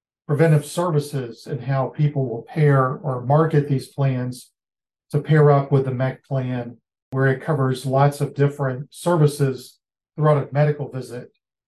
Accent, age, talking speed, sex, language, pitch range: American, 40-59, 150 wpm, male, English, 130-150 Hz